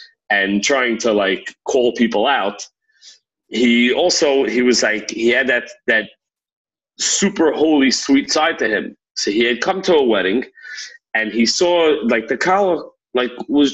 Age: 40-59